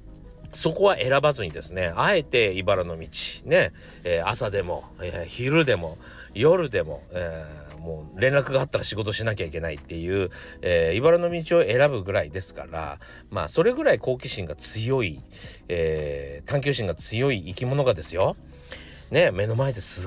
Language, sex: Japanese, male